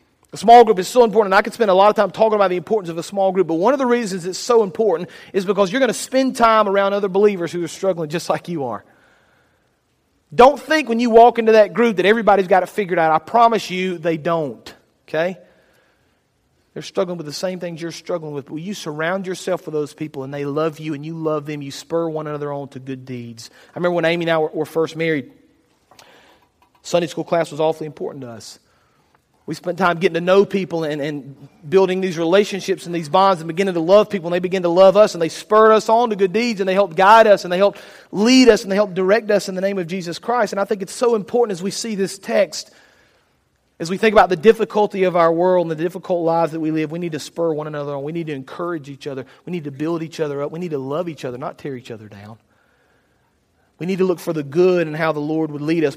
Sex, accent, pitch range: male, American, 155-200 Hz